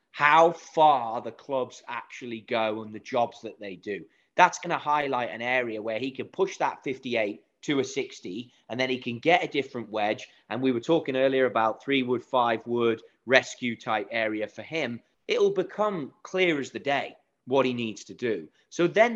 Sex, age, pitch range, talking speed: male, 30-49, 115-160 Hz, 200 wpm